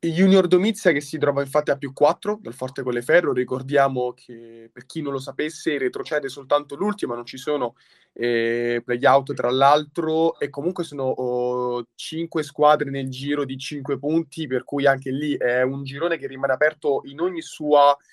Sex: male